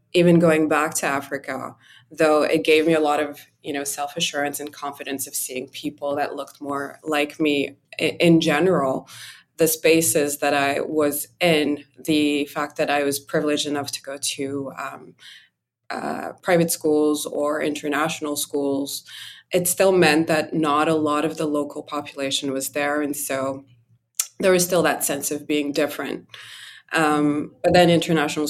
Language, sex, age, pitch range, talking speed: English, female, 20-39, 140-160 Hz, 160 wpm